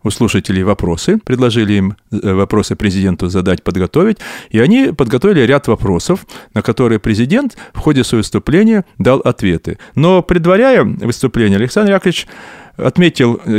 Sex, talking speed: male, 125 wpm